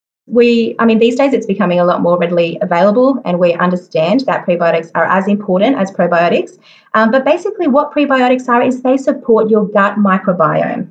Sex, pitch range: female, 190-250 Hz